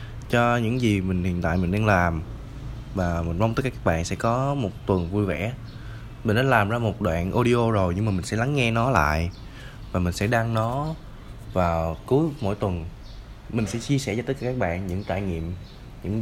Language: Vietnamese